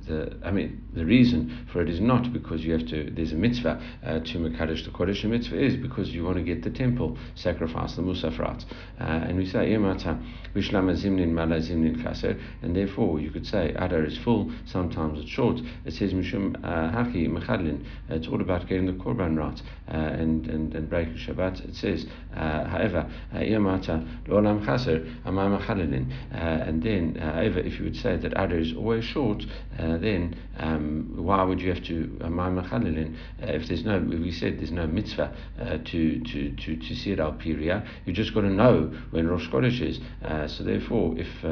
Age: 60-79